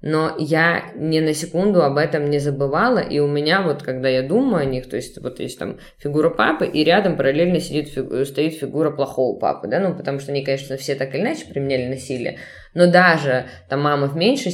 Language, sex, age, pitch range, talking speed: Russian, female, 20-39, 140-175 Hz, 205 wpm